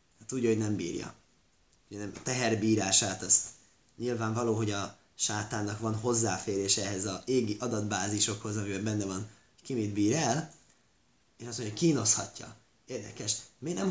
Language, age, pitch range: Hungarian, 30-49, 105-125 Hz